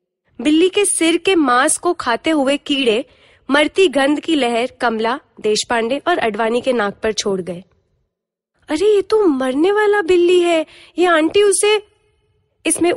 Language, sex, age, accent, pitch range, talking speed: Hindi, female, 20-39, native, 250-360 Hz, 155 wpm